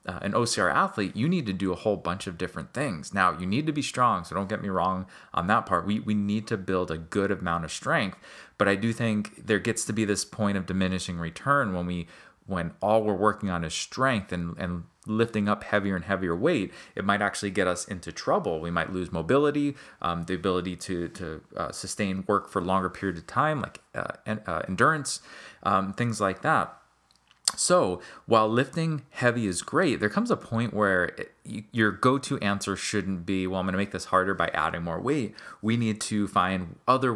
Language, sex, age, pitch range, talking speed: English, male, 30-49, 90-110 Hz, 210 wpm